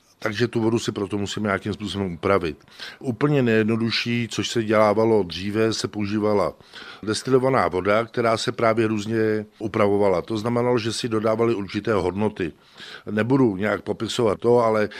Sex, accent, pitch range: male, native, 105-120 Hz